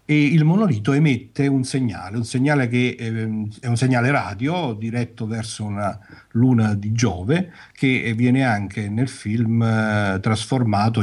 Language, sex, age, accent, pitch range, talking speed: Italian, male, 50-69, native, 100-130 Hz, 140 wpm